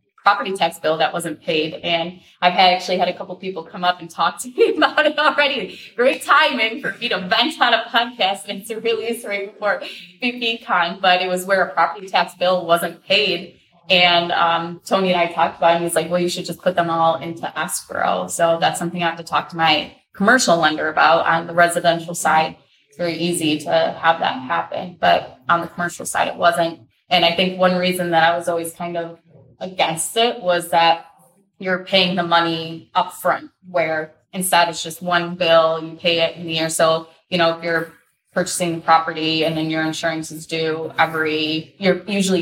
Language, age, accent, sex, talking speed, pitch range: English, 20-39, American, female, 215 wpm, 165-180 Hz